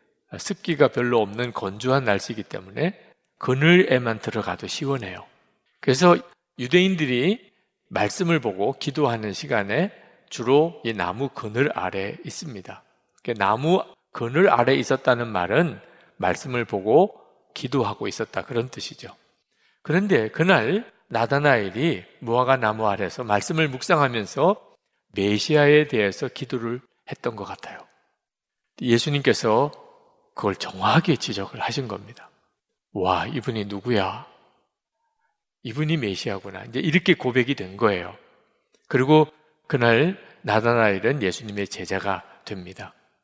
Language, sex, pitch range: Korean, male, 110-165 Hz